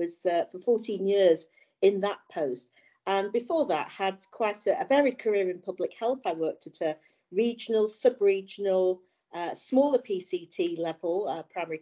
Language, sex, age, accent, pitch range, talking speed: English, female, 40-59, British, 165-225 Hz, 165 wpm